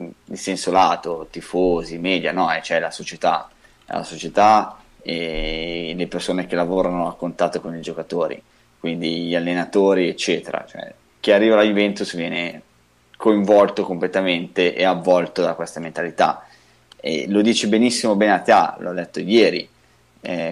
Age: 20-39